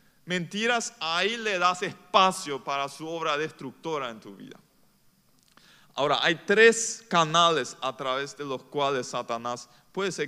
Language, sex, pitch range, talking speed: Spanish, male, 135-175 Hz, 140 wpm